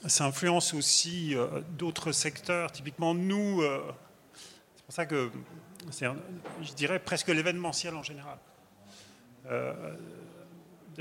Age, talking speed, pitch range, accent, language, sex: 30-49, 115 wpm, 140-170 Hz, French, French, male